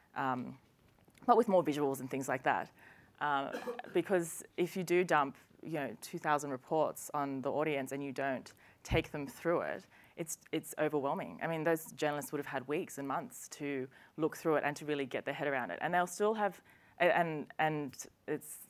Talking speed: 195 wpm